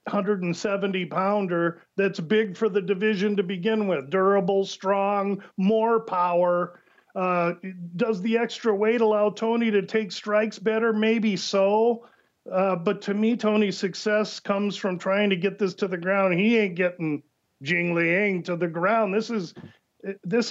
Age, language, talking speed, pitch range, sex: 50-69, English, 150 wpm, 190-220 Hz, male